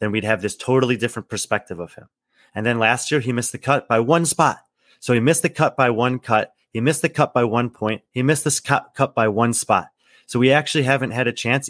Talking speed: 250 wpm